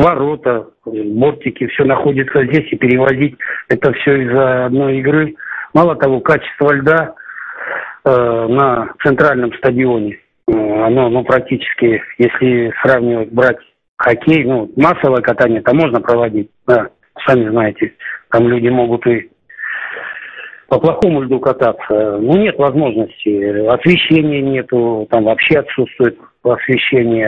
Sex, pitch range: male, 120-145 Hz